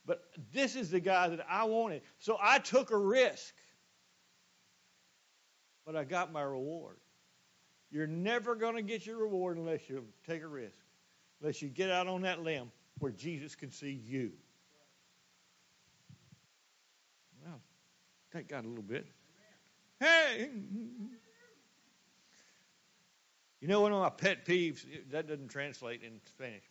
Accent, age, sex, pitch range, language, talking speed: American, 60-79, male, 165-230 Hz, English, 135 wpm